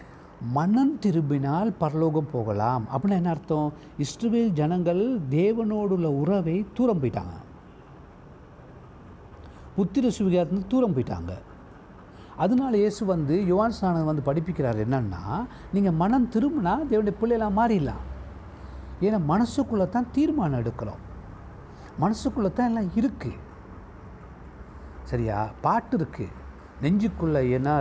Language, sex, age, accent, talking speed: Tamil, male, 60-79, native, 95 wpm